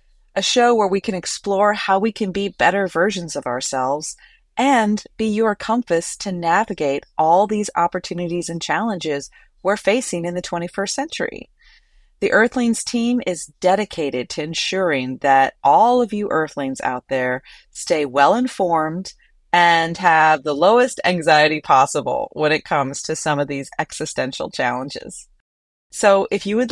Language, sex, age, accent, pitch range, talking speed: English, female, 30-49, American, 155-205 Hz, 150 wpm